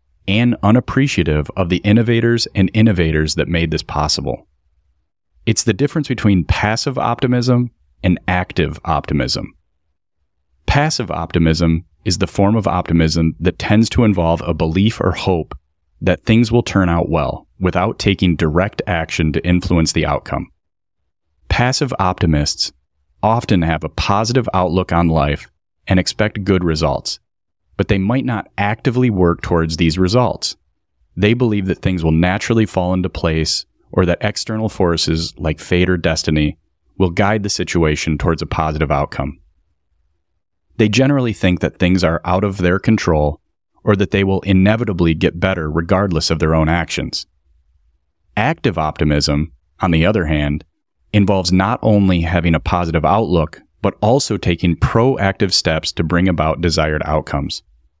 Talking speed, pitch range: 145 wpm, 80-100 Hz